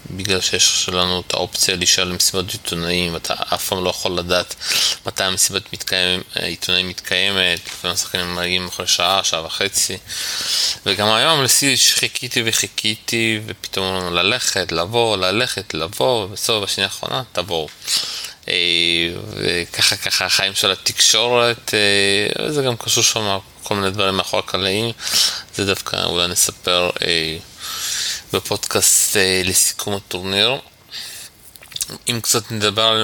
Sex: male